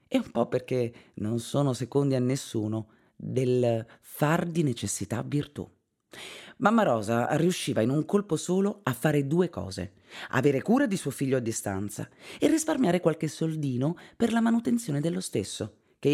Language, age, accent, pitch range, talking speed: Italian, 30-49, native, 120-180 Hz, 155 wpm